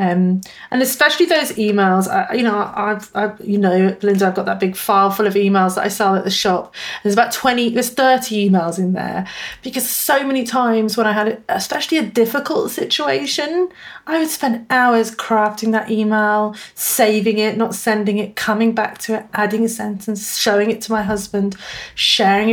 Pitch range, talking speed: 205-260 Hz, 190 wpm